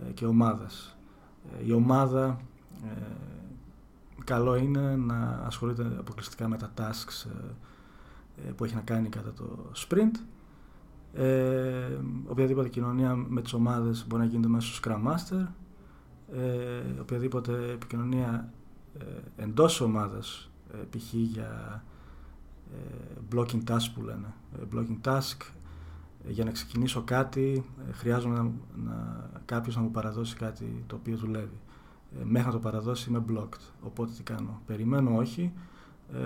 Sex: male